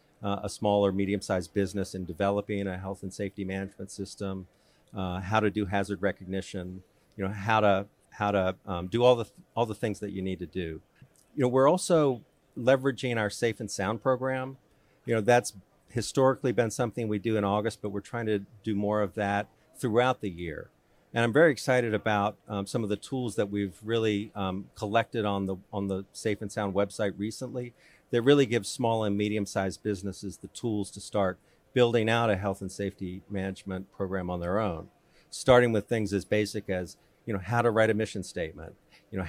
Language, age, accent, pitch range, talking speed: English, 40-59, American, 95-115 Hz, 200 wpm